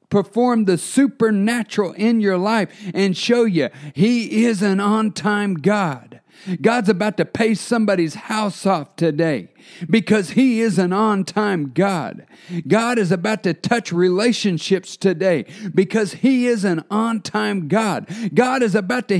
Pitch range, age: 140-215 Hz, 50-69